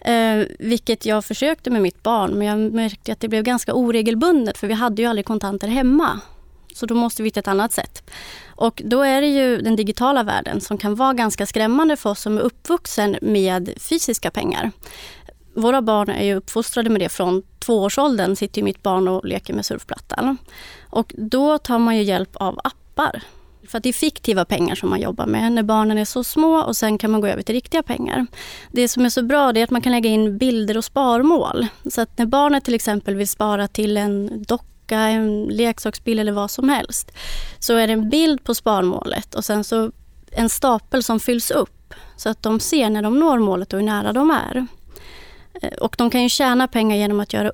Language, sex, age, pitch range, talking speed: Swedish, female, 30-49, 210-255 Hz, 210 wpm